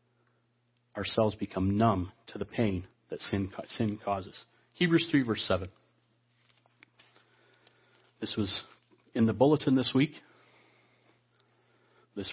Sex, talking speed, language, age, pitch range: male, 105 wpm, English, 40-59, 110-135 Hz